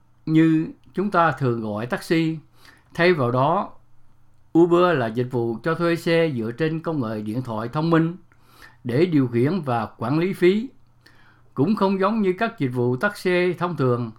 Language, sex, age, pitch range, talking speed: English, male, 60-79, 120-170 Hz, 175 wpm